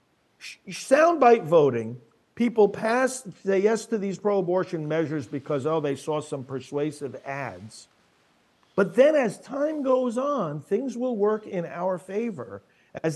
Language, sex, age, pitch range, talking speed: English, male, 50-69, 145-225 Hz, 135 wpm